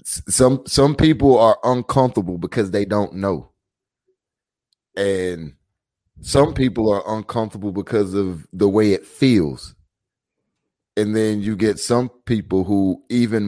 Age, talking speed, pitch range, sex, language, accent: 30-49, 125 wpm, 90-105 Hz, male, English, American